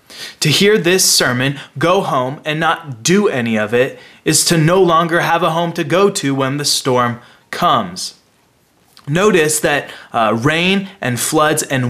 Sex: male